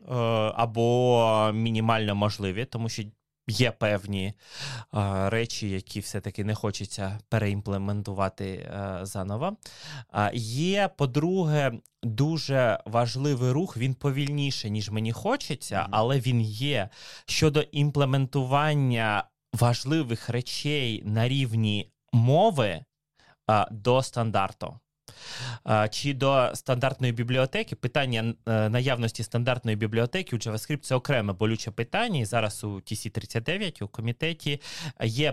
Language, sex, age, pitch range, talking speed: Ukrainian, male, 20-39, 105-135 Hz, 95 wpm